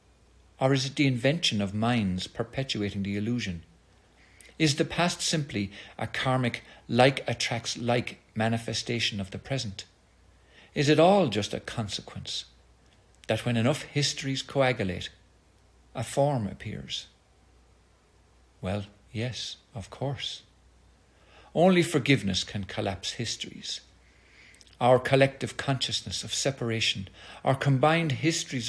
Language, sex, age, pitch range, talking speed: English, male, 50-69, 95-135 Hz, 115 wpm